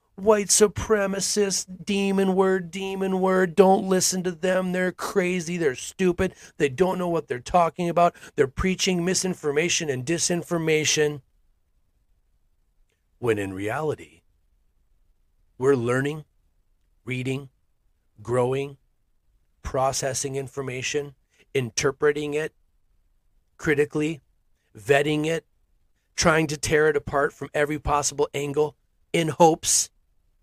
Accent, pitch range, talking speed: American, 105-180 Hz, 100 wpm